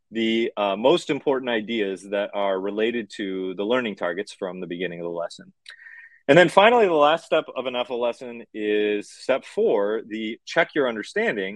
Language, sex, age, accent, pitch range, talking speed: English, male, 30-49, American, 105-155 Hz, 180 wpm